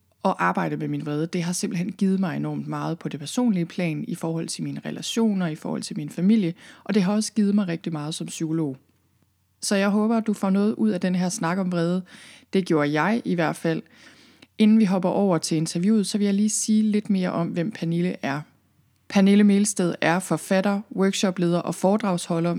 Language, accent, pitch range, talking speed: Danish, native, 165-200 Hz, 215 wpm